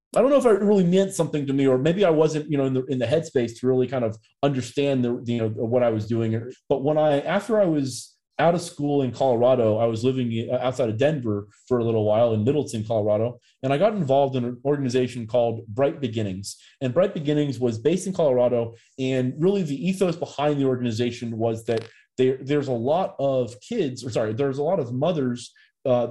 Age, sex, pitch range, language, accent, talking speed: 30-49, male, 120-155 Hz, English, American, 225 wpm